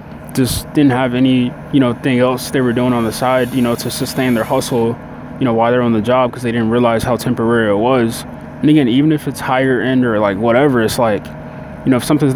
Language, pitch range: English, 110-130 Hz